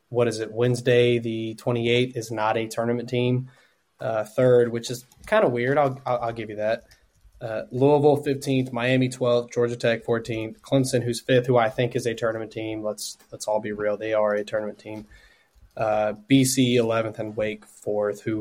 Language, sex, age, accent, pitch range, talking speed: English, male, 20-39, American, 115-135 Hz, 195 wpm